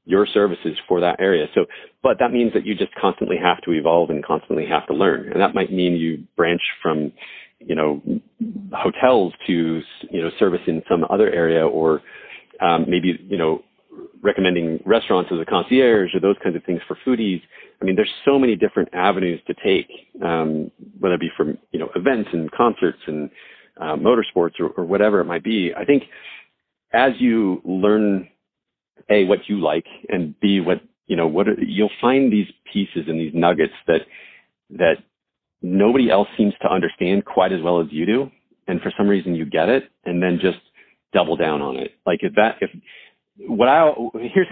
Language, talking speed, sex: English, 190 wpm, male